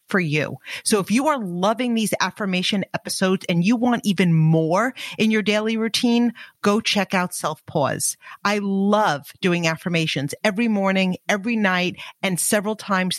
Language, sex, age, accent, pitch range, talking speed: English, female, 50-69, American, 165-205 Hz, 160 wpm